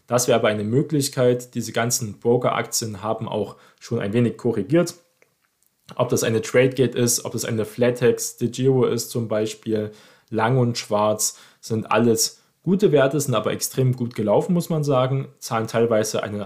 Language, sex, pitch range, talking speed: German, male, 110-135 Hz, 170 wpm